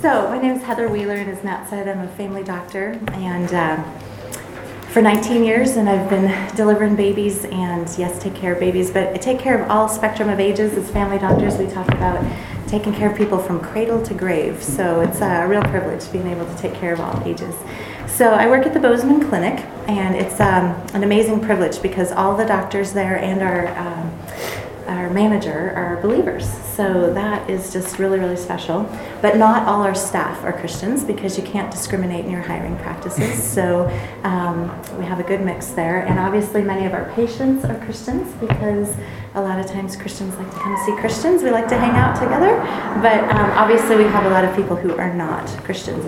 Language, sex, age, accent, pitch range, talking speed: English, female, 30-49, American, 180-215 Hz, 205 wpm